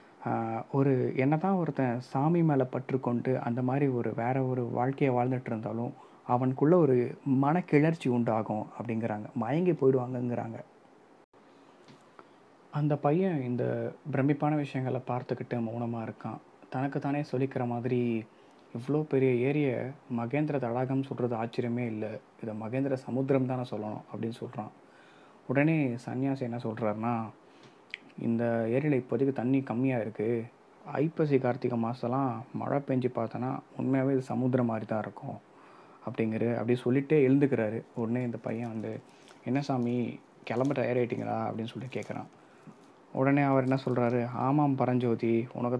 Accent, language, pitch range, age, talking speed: native, Tamil, 115-135 Hz, 30-49, 120 wpm